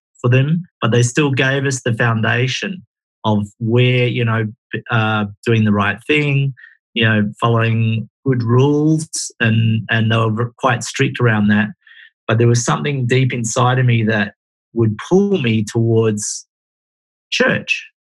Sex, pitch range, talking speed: male, 105-130 Hz, 150 wpm